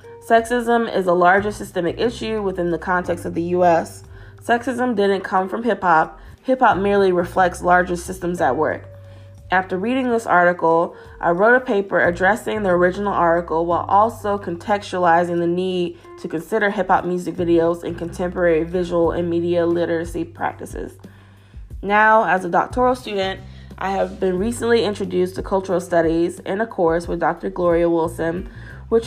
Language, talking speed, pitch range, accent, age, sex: English, 160 wpm, 170-200 Hz, American, 20-39, female